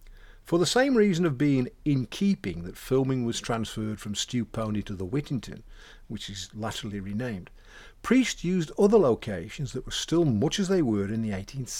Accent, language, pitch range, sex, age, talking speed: British, English, 100-165 Hz, male, 50-69, 185 wpm